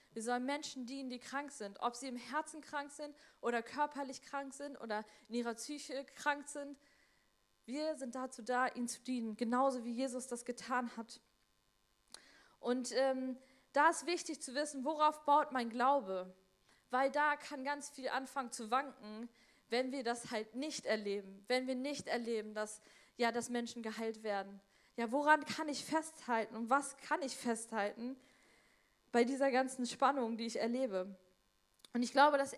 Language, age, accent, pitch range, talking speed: German, 20-39, German, 235-280 Hz, 170 wpm